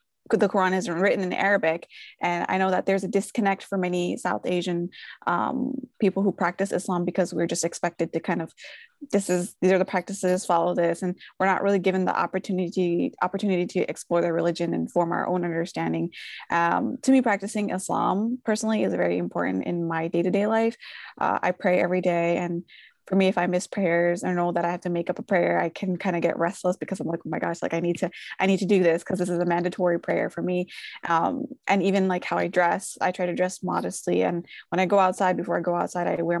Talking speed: 235 wpm